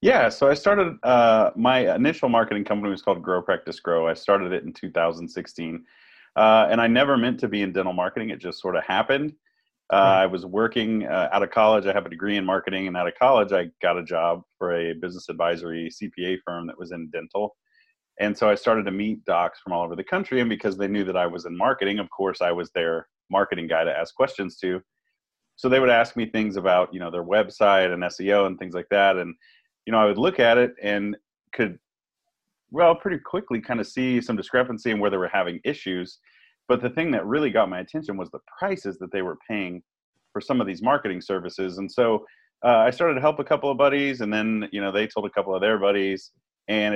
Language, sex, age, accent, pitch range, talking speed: English, male, 30-49, American, 90-115 Hz, 235 wpm